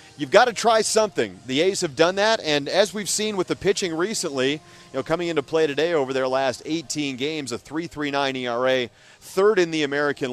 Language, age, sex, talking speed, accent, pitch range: English, 40-59, male, 210 wpm, American, 125-165 Hz